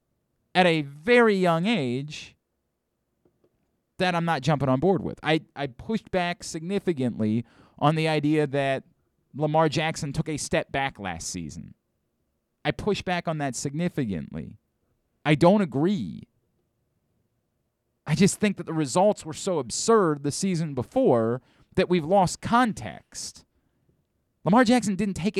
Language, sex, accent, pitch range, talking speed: English, male, American, 145-200 Hz, 135 wpm